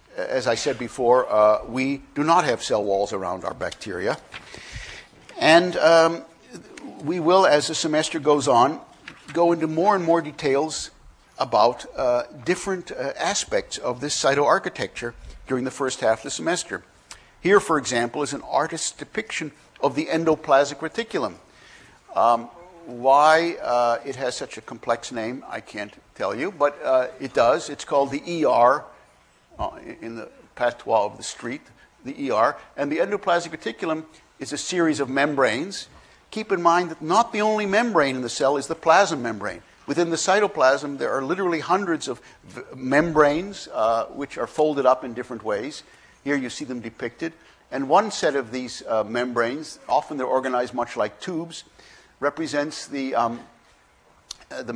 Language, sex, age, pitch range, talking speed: English, male, 60-79, 125-165 Hz, 160 wpm